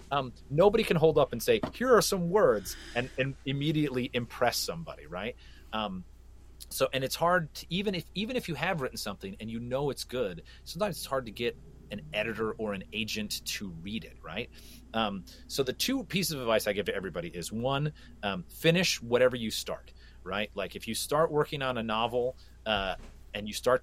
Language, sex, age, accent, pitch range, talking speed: English, male, 30-49, American, 95-130 Hz, 205 wpm